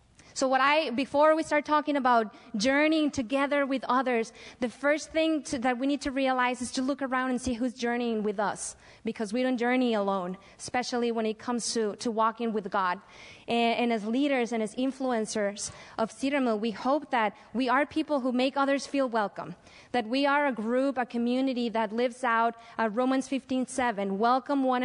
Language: English